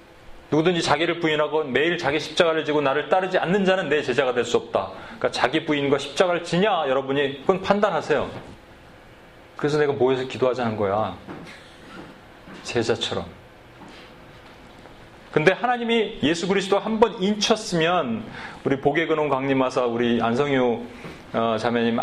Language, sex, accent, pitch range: Korean, male, native, 135-190 Hz